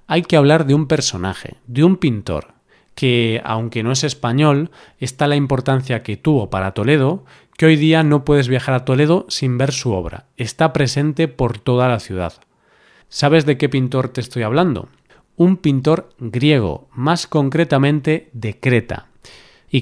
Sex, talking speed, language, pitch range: male, 165 wpm, Spanish, 120-150 Hz